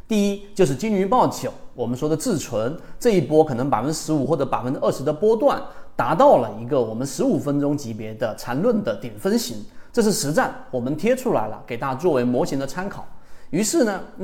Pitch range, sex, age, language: 120-190 Hz, male, 30-49, Chinese